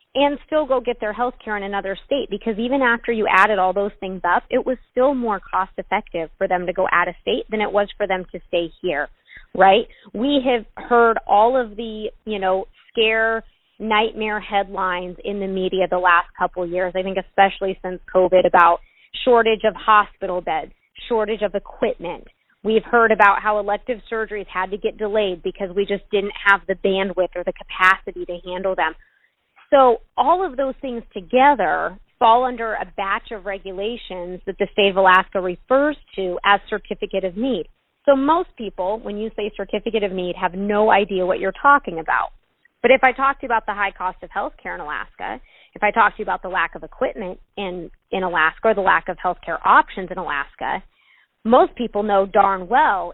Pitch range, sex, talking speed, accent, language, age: 185-230 Hz, female, 195 wpm, American, English, 20-39